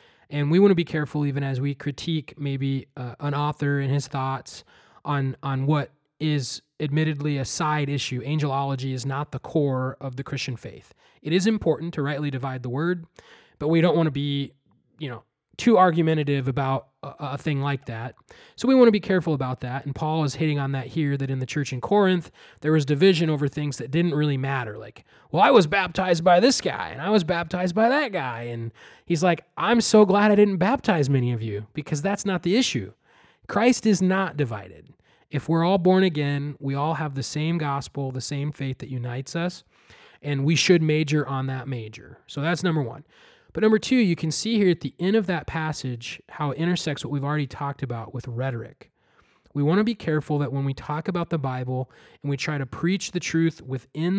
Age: 20-39